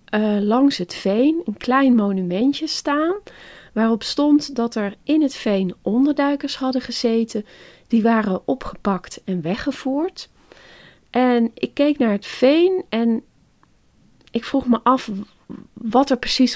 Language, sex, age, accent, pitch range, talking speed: Dutch, female, 40-59, Dutch, 195-250 Hz, 135 wpm